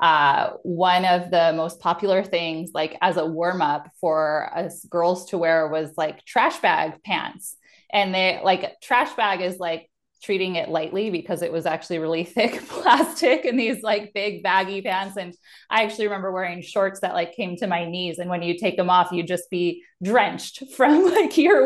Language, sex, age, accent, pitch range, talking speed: English, female, 20-39, American, 170-220 Hz, 190 wpm